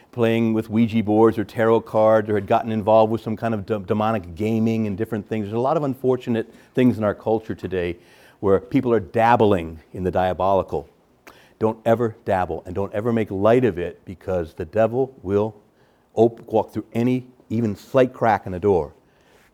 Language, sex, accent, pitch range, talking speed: English, male, American, 105-135 Hz, 190 wpm